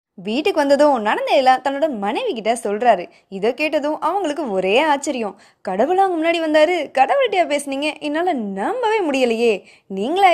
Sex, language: female, Tamil